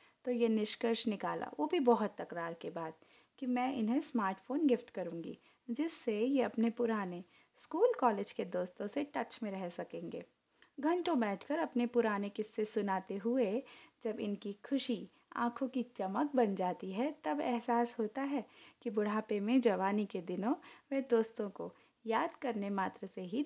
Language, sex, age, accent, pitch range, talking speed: Hindi, female, 20-39, native, 205-275 Hz, 165 wpm